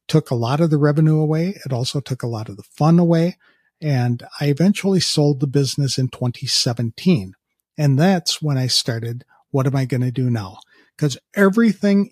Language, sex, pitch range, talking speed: English, male, 130-165 Hz, 190 wpm